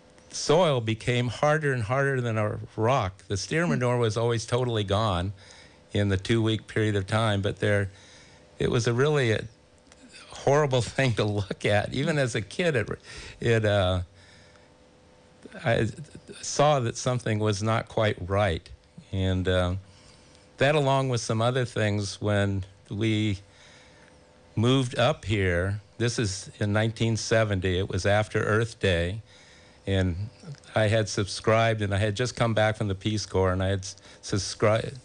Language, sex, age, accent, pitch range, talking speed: English, male, 50-69, American, 95-115 Hz, 150 wpm